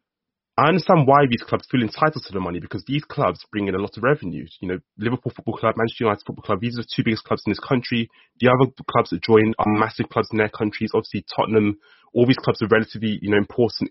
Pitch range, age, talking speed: 110-150 Hz, 20-39, 250 wpm